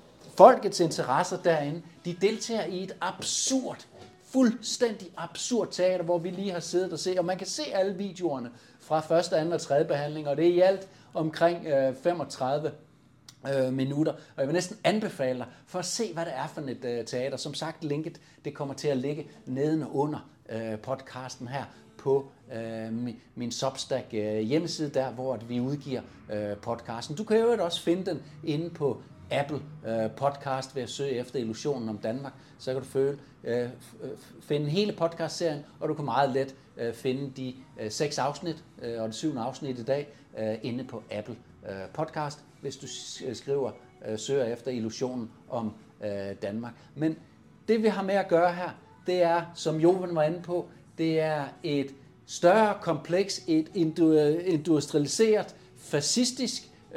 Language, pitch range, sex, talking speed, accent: Danish, 130-170 Hz, male, 155 wpm, native